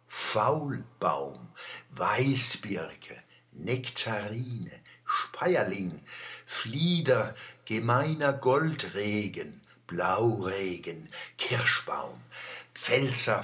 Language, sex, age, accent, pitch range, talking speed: German, male, 60-79, German, 110-160 Hz, 45 wpm